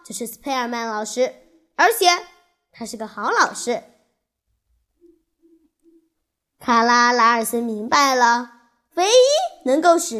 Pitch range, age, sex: 235-320 Hz, 20-39, female